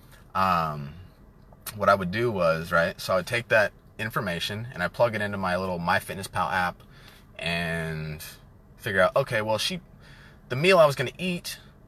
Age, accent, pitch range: 30-49, American, 100-145 Hz